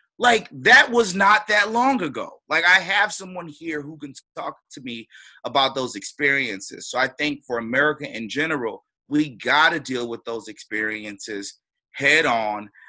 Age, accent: 30-49, American